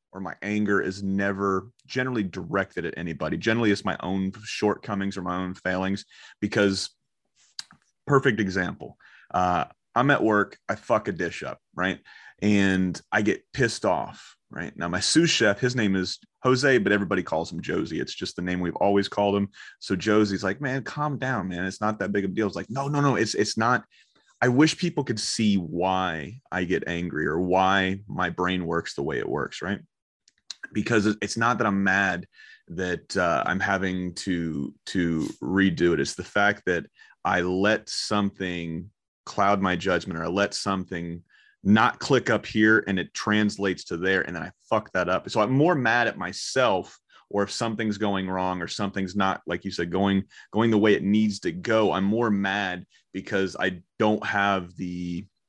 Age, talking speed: 30-49, 190 wpm